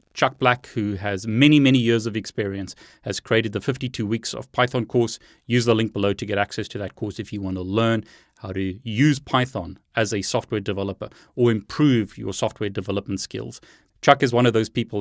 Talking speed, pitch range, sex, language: 205 wpm, 100-125 Hz, male, English